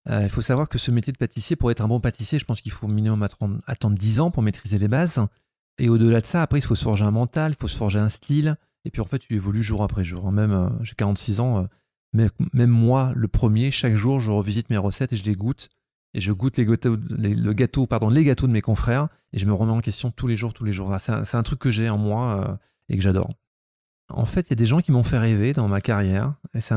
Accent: French